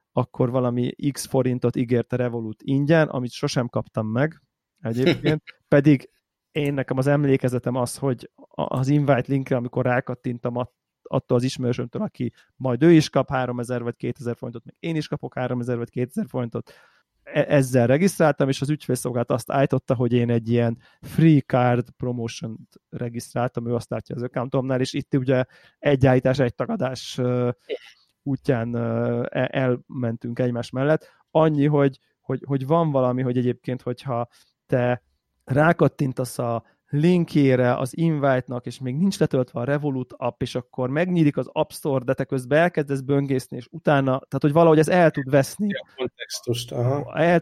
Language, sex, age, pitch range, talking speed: Hungarian, male, 30-49, 125-145 Hz, 150 wpm